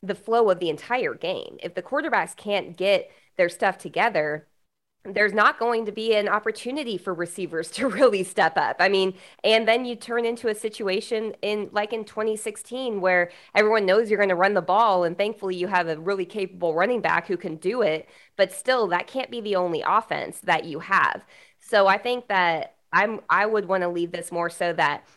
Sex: female